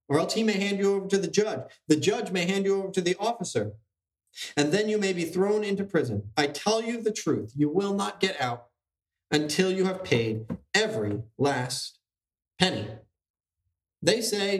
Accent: American